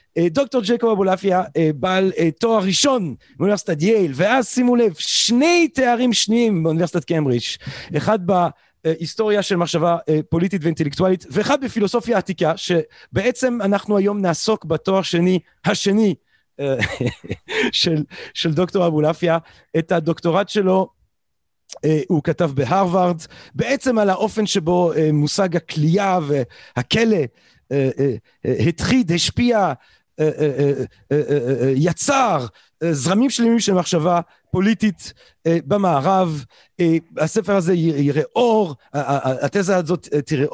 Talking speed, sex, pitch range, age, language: 95 wpm, male, 160-215 Hz, 40-59, Hebrew